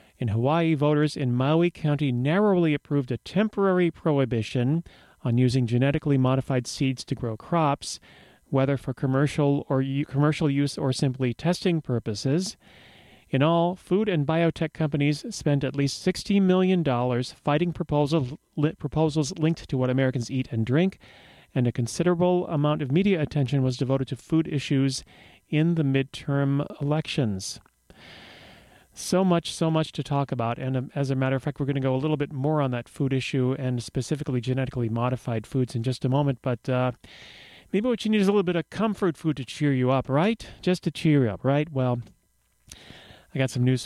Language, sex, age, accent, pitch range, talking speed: English, male, 40-59, American, 130-160 Hz, 180 wpm